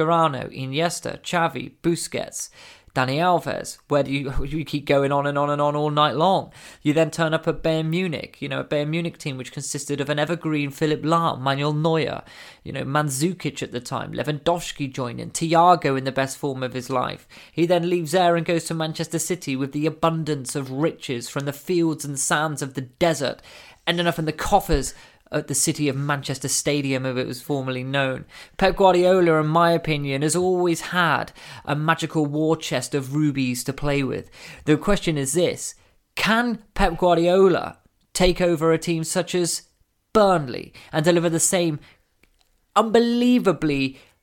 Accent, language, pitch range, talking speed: British, English, 140-175 Hz, 180 wpm